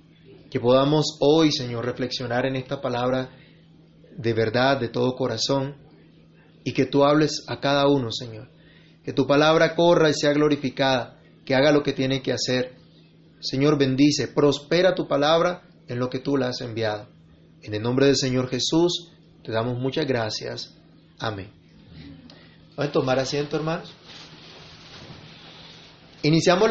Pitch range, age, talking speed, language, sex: 130-165 Hz, 30-49, 145 wpm, Spanish, male